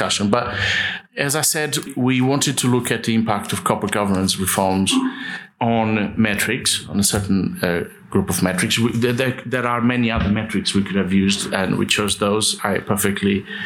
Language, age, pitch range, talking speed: English, 50-69, 100-145 Hz, 175 wpm